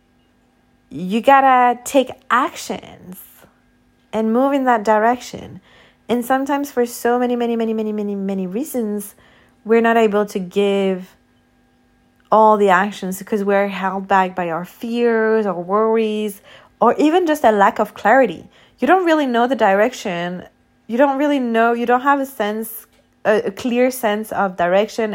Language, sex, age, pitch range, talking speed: English, female, 30-49, 185-230 Hz, 155 wpm